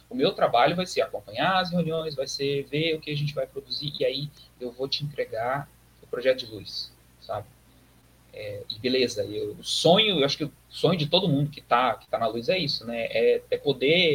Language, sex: Portuguese, male